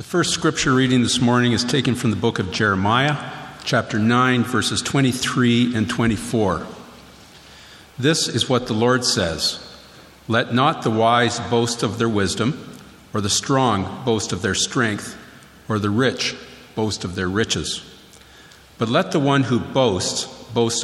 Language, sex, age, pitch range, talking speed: English, male, 50-69, 105-130 Hz, 155 wpm